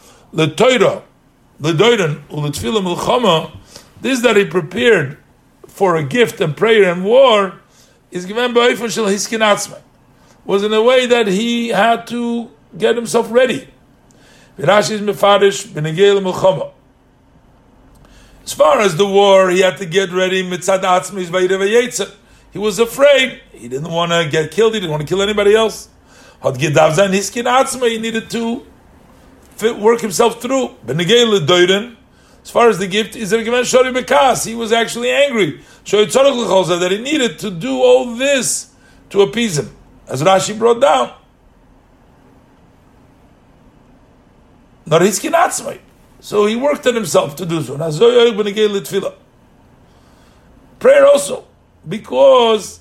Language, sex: English, male